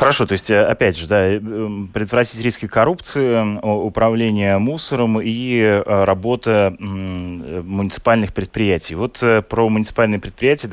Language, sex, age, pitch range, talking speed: Russian, male, 20-39, 95-115 Hz, 105 wpm